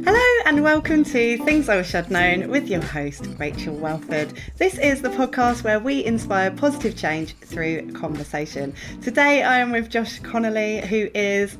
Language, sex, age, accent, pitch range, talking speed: English, female, 30-49, British, 165-230 Hz, 170 wpm